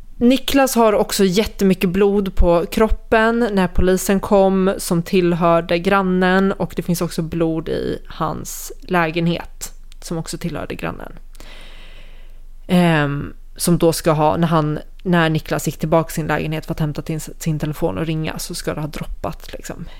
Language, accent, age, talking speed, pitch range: Swedish, native, 20-39, 160 wpm, 160-200 Hz